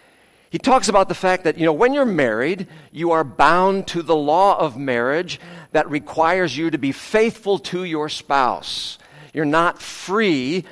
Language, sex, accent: English, male, American